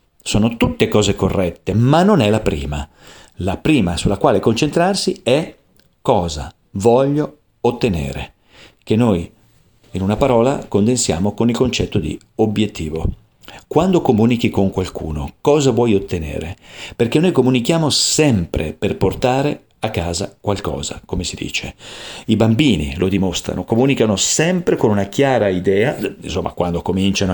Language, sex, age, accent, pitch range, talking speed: Italian, male, 40-59, native, 95-125 Hz, 130 wpm